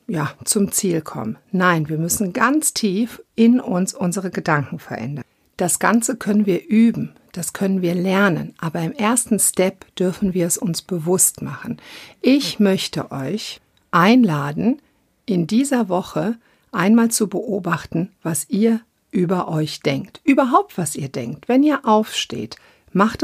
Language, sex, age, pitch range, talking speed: German, female, 50-69, 170-220 Hz, 140 wpm